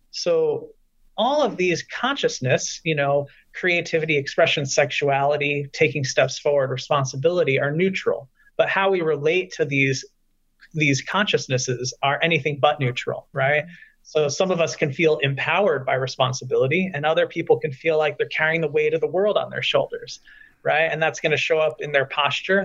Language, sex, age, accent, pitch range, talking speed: English, male, 30-49, American, 140-175 Hz, 170 wpm